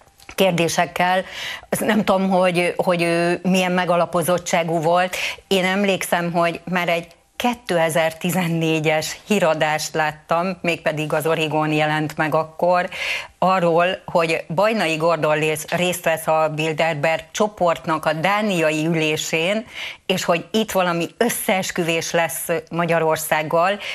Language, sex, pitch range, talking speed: Hungarian, female, 160-190 Hz, 105 wpm